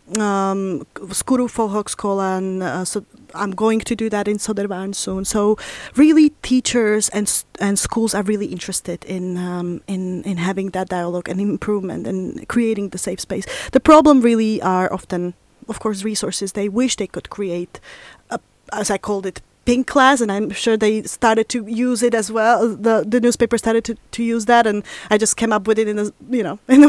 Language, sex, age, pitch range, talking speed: Swedish, female, 20-39, 195-240 Hz, 190 wpm